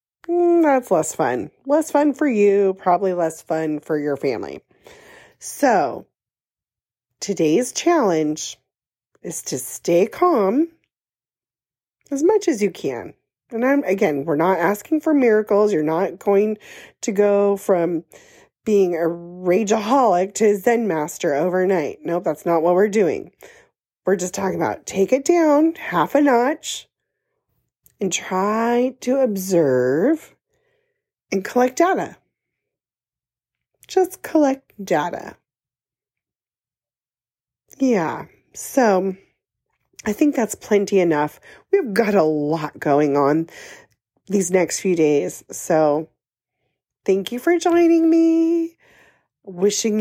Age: 30-49